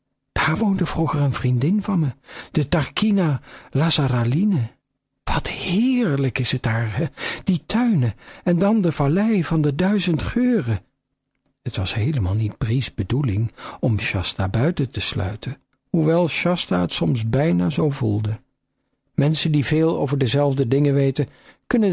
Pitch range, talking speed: 120-155 Hz, 140 wpm